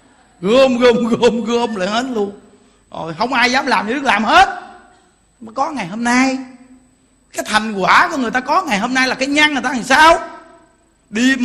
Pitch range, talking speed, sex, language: 215-280 Hz, 205 wpm, male, Vietnamese